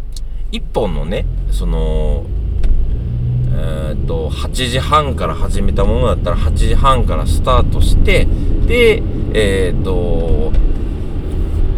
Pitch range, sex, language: 80-110 Hz, male, Japanese